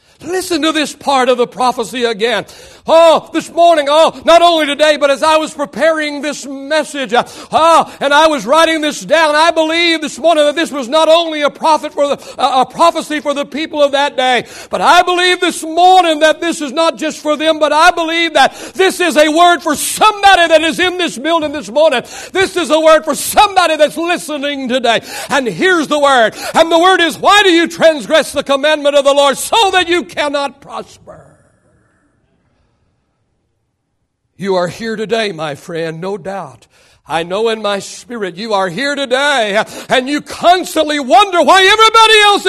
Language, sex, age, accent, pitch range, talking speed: English, male, 60-79, American, 240-330 Hz, 190 wpm